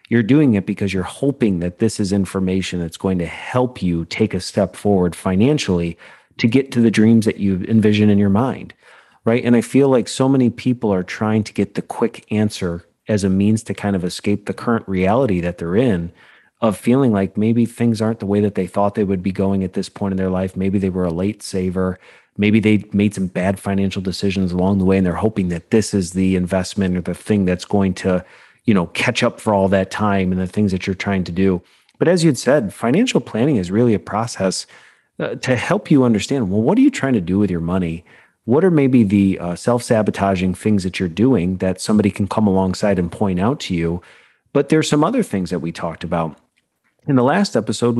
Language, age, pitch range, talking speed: English, 30-49, 95-115 Hz, 230 wpm